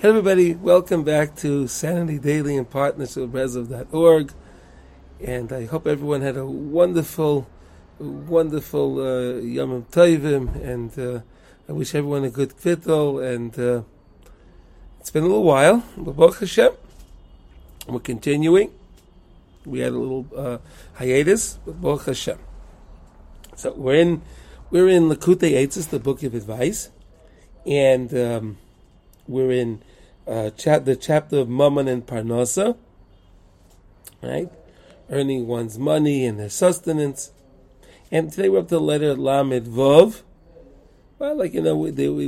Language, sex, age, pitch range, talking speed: English, male, 40-59, 115-150 Hz, 130 wpm